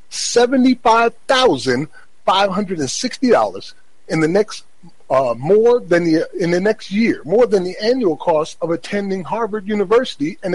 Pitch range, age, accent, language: 160-230 Hz, 40-59, American, English